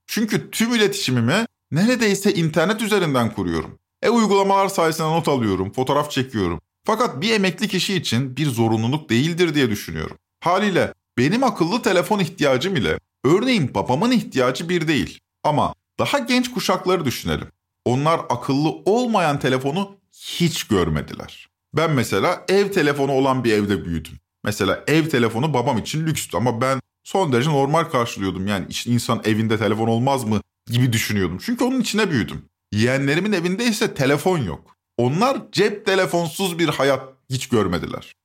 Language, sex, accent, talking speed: Turkish, male, native, 140 wpm